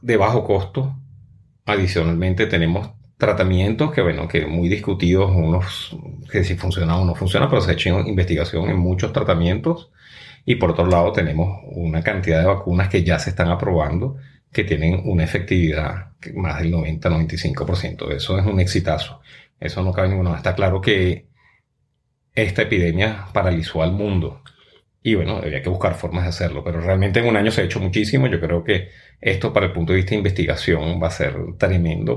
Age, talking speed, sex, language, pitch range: 30-49, 175 wpm, male, Spanish, 85-105 Hz